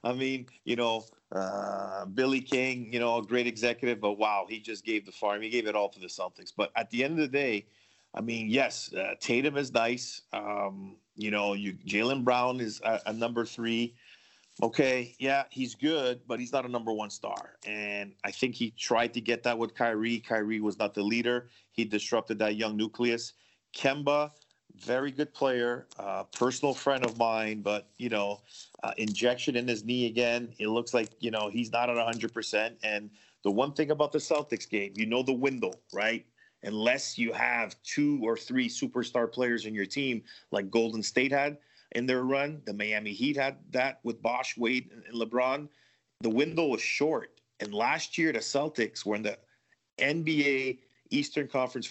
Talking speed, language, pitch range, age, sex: 190 wpm, English, 110-130 Hz, 40-59, male